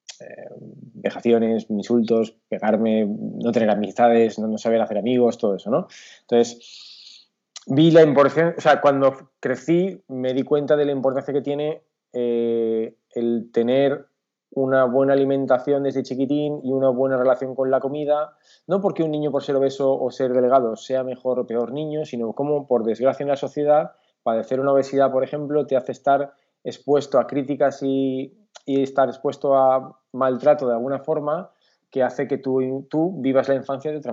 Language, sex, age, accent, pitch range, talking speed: Spanish, male, 20-39, Spanish, 120-140 Hz, 170 wpm